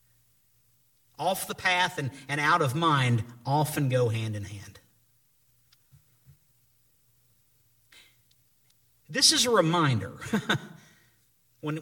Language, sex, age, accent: English, male, 50-69, American